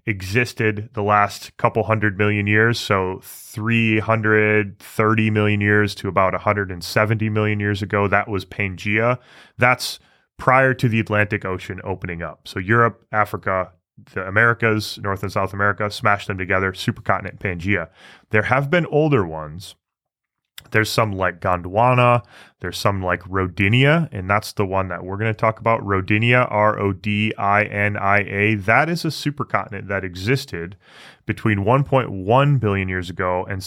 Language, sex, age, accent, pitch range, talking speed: English, male, 20-39, American, 100-120 Hz, 140 wpm